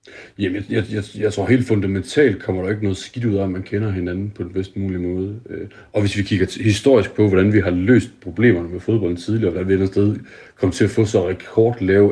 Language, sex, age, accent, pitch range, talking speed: Danish, male, 40-59, native, 95-120 Hz, 250 wpm